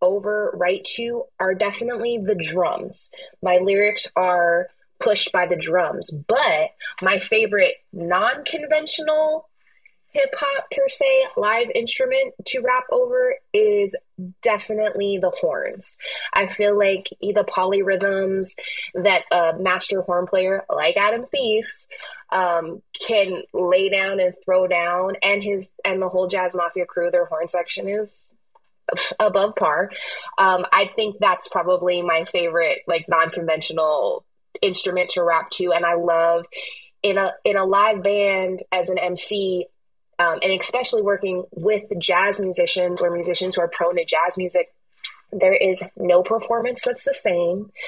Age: 20-39